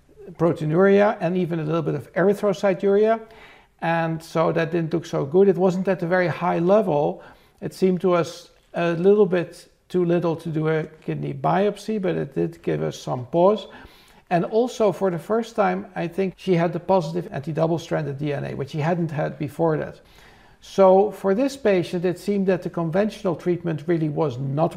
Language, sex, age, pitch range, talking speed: English, male, 60-79, 160-195 Hz, 185 wpm